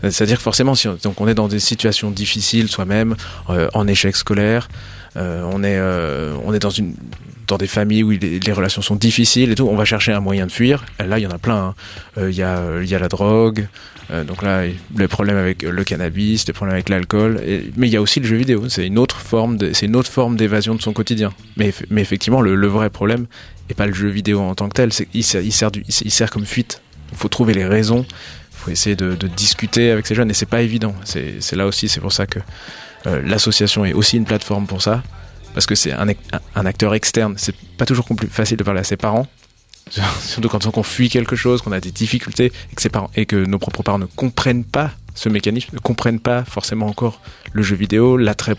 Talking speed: 250 wpm